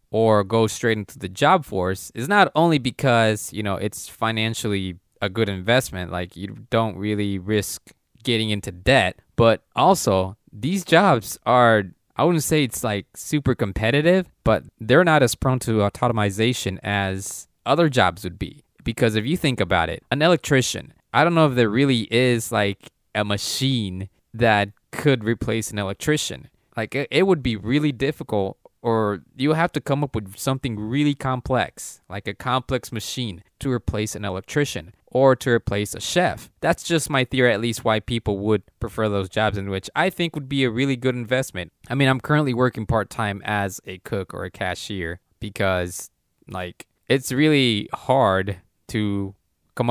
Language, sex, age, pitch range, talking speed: English, male, 20-39, 100-130 Hz, 175 wpm